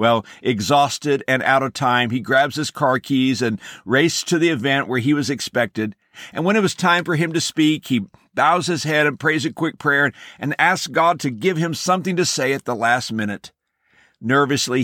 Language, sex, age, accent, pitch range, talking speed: English, male, 60-79, American, 125-155 Hz, 210 wpm